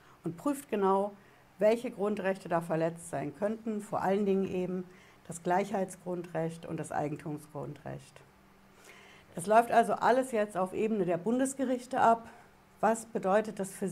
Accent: German